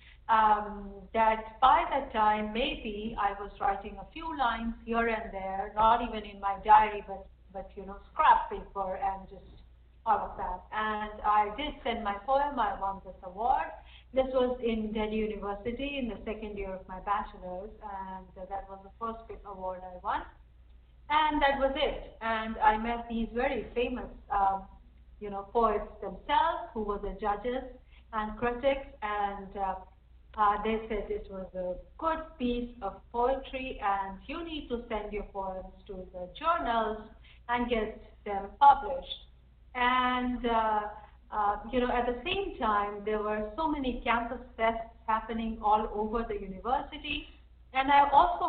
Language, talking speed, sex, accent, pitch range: English, 160 wpm, female, Indian, 200-245 Hz